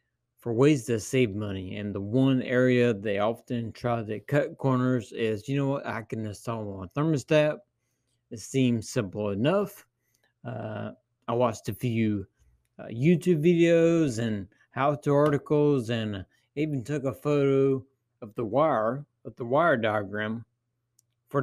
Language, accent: English, American